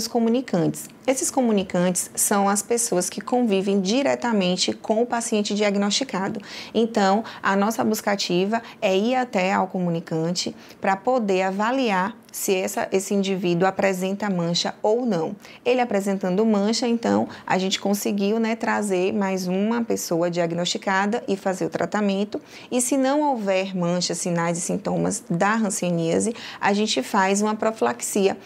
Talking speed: 135 wpm